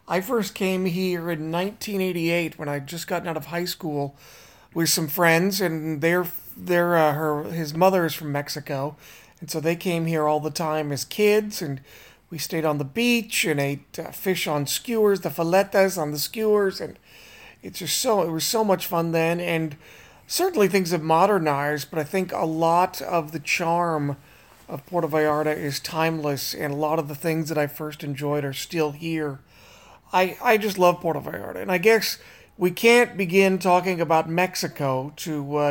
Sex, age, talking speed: male, 40-59, 190 wpm